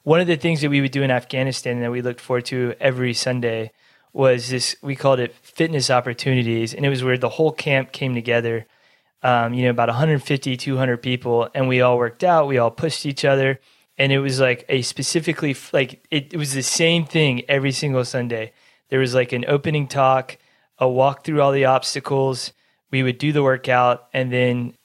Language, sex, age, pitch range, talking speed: English, male, 20-39, 120-140 Hz, 205 wpm